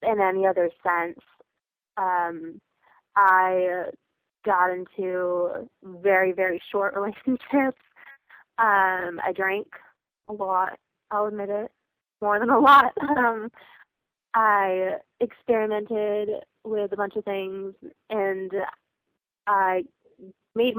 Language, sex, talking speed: English, female, 100 wpm